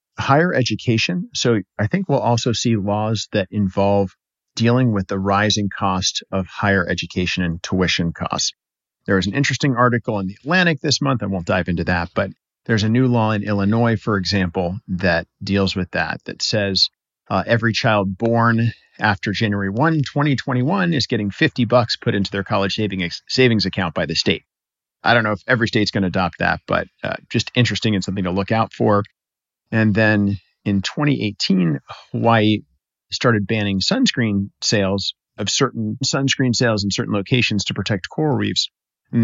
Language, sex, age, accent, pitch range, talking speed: English, male, 50-69, American, 95-120 Hz, 175 wpm